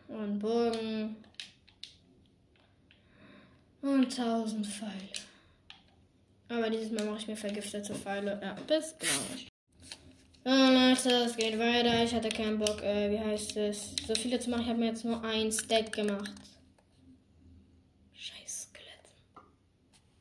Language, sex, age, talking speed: English, female, 10-29, 125 wpm